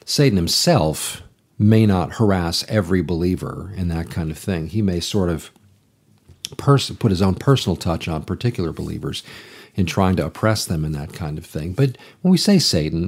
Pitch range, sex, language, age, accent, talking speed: 85-110 Hz, male, English, 50-69, American, 185 wpm